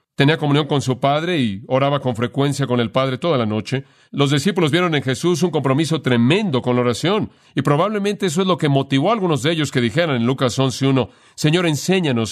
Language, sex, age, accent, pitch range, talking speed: Spanish, male, 40-59, Mexican, 130-175 Hz, 215 wpm